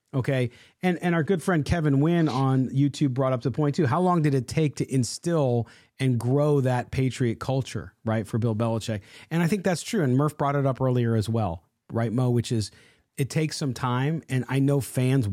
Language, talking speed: English, 220 wpm